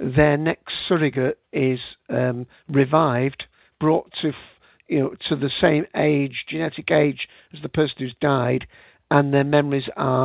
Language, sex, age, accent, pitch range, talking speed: English, male, 50-69, British, 130-155 Hz, 150 wpm